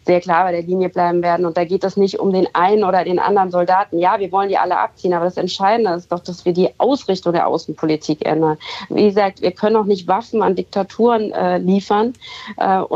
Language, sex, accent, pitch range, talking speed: German, female, German, 185-210 Hz, 225 wpm